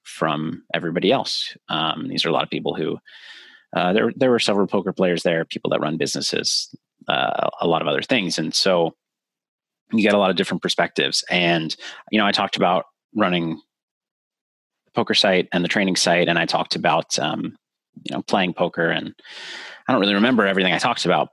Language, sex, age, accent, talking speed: English, male, 30-49, American, 195 wpm